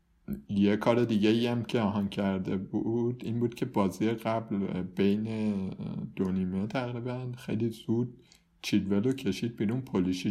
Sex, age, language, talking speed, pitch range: male, 50-69, Persian, 130 wpm, 95-115 Hz